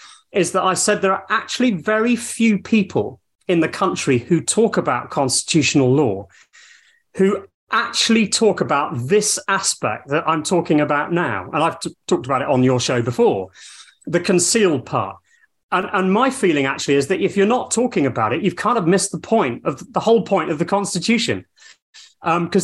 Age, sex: 30-49, male